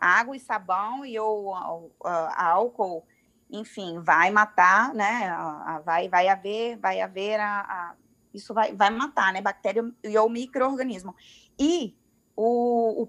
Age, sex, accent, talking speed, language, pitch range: 20-39, female, Brazilian, 115 wpm, Portuguese, 200-250 Hz